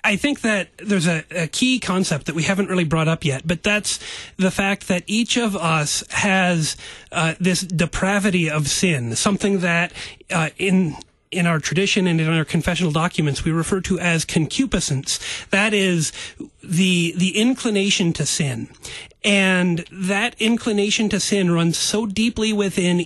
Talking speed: 160 wpm